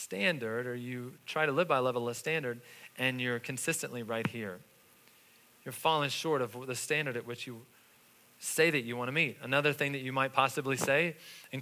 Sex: male